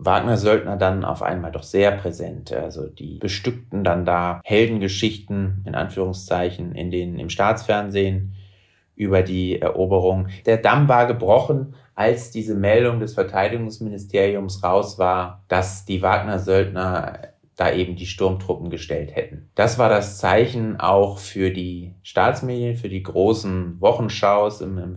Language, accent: German, German